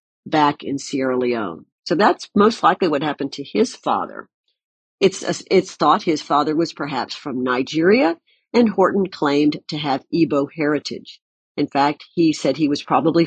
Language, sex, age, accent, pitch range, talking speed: English, female, 50-69, American, 140-205 Hz, 165 wpm